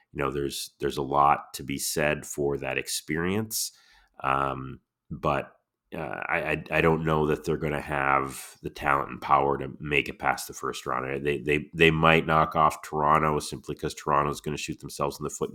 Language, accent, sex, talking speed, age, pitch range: English, American, male, 195 wpm, 30-49, 65-80 Hz